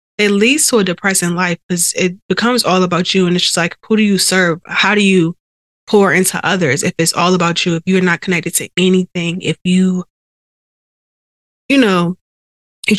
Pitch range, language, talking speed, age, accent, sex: 175-200 Hz, English, 195 wpm, 20-39, American, female